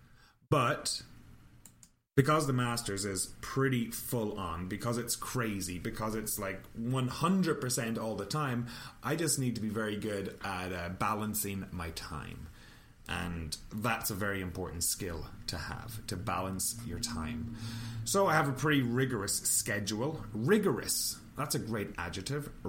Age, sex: 30-49, male